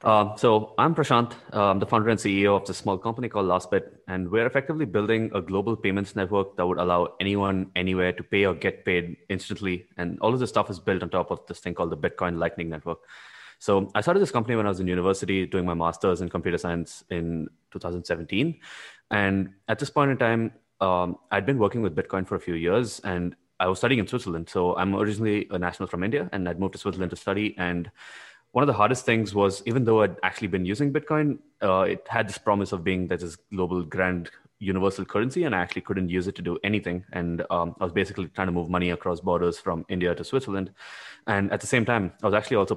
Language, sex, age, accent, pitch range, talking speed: English, male, 20-39, Indian, 90-105 Hz, 230 wpm